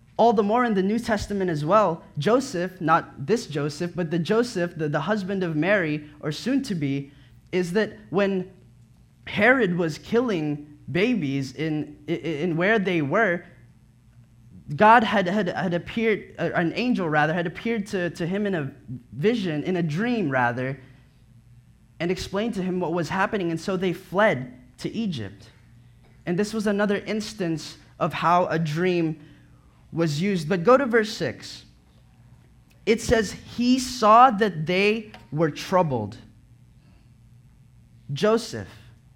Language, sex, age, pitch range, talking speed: English, male, 20-39, 140-215 Hz, 145 wpm